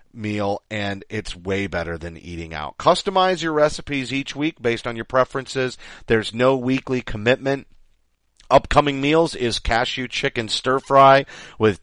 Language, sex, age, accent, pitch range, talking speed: English, male, 40-59, American, 105-135 Hz, 145 wpm